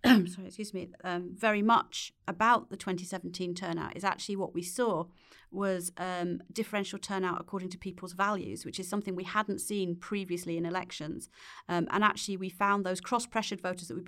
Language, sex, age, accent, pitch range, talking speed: English, female, 40-59, British, 170-190 Hz, 185 wpm